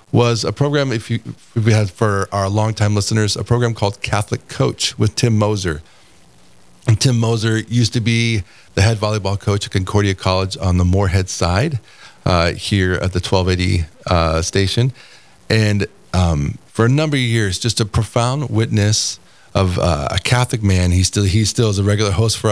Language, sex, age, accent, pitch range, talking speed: English, male, 40-59, American, 95-115 Hz, 185 wpm